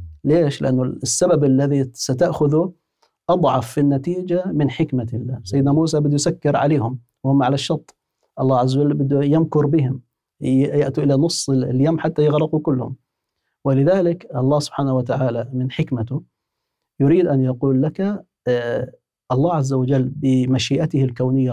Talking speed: 125 wpm